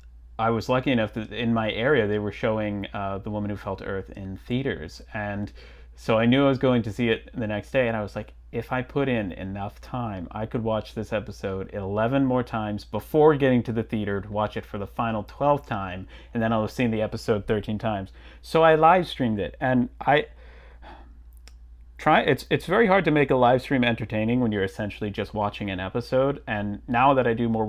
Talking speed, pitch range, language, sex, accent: 225 wpm, 100-125 Hz, English, male, American